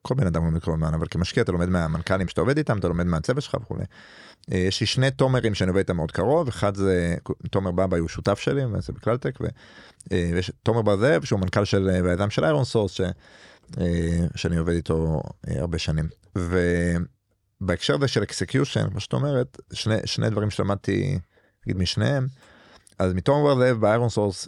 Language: Hebrew